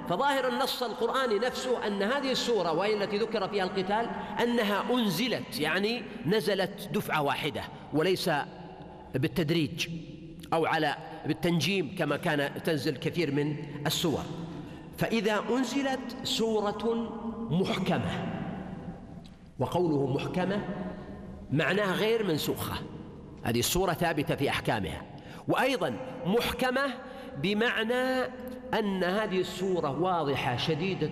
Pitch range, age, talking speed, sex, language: 170-230 Hz, 50-69, 100 wpm, male, Arabic